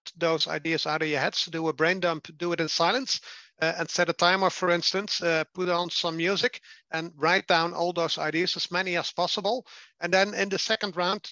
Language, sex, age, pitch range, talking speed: English, male, 50-69, 160-185 Hz, 225 wpm